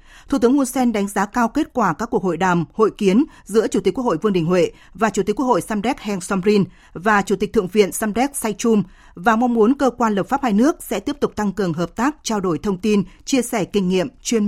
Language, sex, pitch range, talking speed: Vietnamese, female, 195-250 Hz, 260 wpm